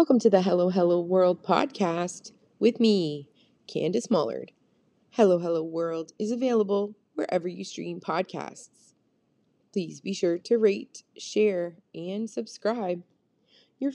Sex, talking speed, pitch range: female, 125 wpm, 165-215 Hz